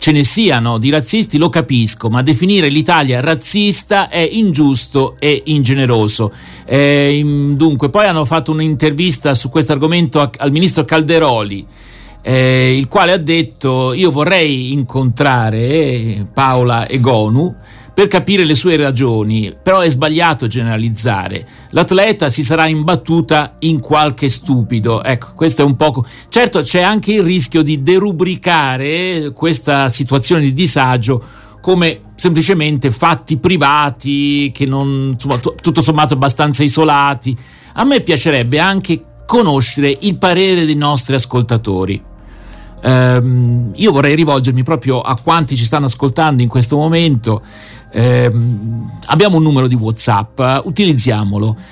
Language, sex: Italian, male